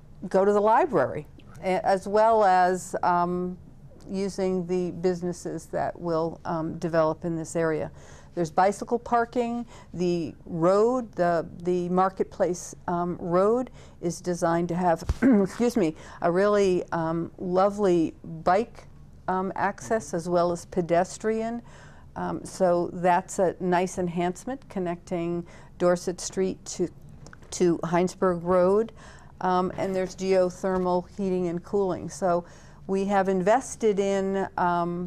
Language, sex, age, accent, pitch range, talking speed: English, female, 50-69, American, 170-185 Hz, 120 wpm